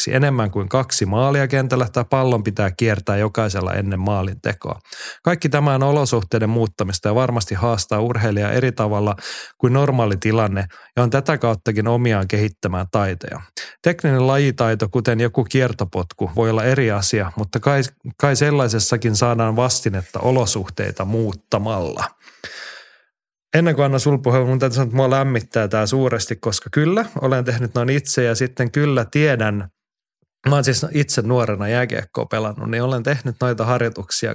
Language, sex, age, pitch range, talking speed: Finnish, male, 30-49, 110-130 Hz, 145 wpm